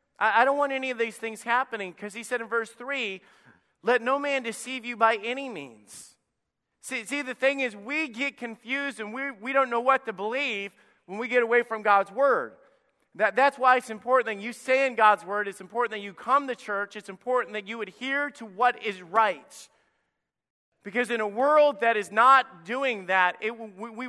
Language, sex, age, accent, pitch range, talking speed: English, male, 40-59, American, 210-255 Hz, 210 wpm